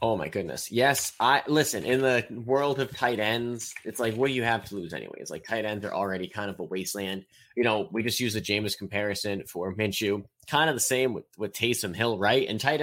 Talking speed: 245 wpm